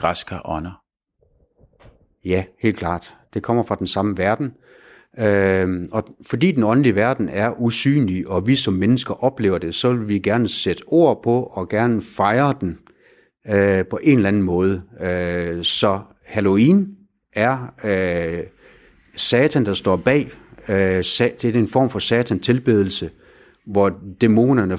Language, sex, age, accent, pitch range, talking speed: Danish, male, 60-79, native, 95-120 Hz, 130 wpm